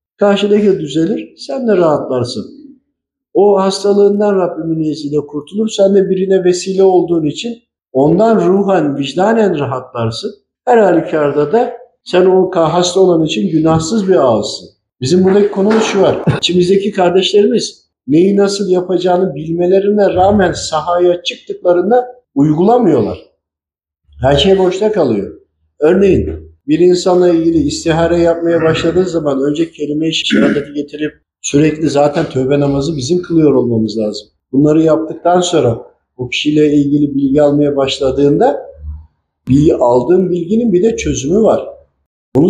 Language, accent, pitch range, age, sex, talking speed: Turkish, native, 140-195 Hz, 50-69, male, 120 wpm